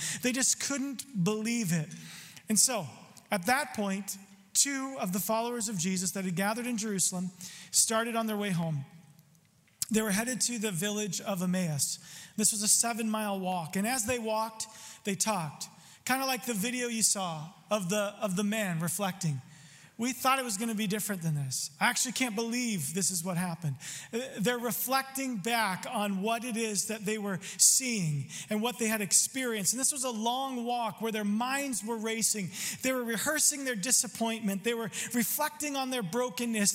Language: English